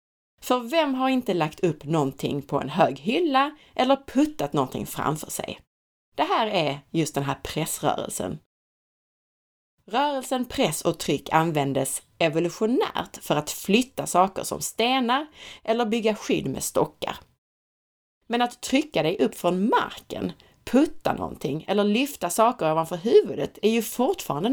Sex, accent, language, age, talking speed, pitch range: female, native, Swedish, 30-49, 140 wpm, 155-250 Hz